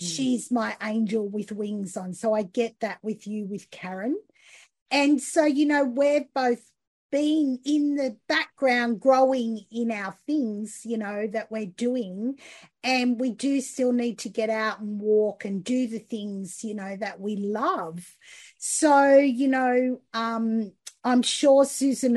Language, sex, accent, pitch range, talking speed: English, female, Australian, 210-260 Hz, 160 wpm